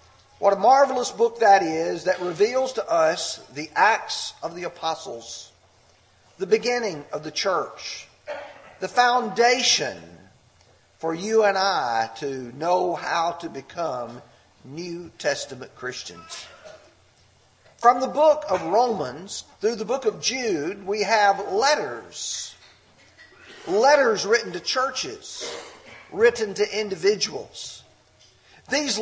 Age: 50-69